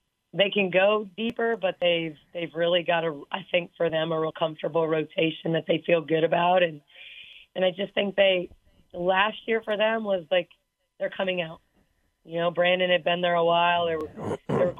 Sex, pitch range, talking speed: female, 165-185 Hz, 205 wpm